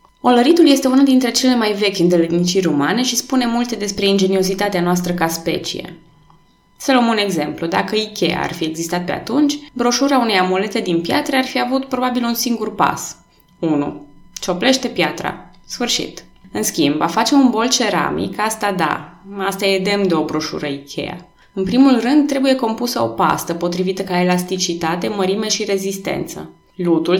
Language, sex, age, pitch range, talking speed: Romanian, female, 20-39, 175-230 Hz, 165 wpm